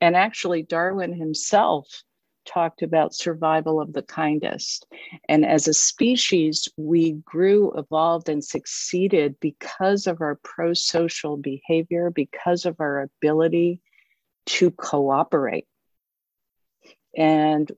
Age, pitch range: 50-69, 155-185 Hz